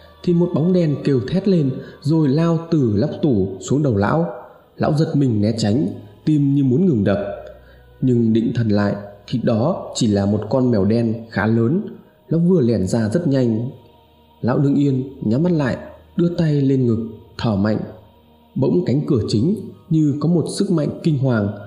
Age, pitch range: 20-39, 110-155 Hz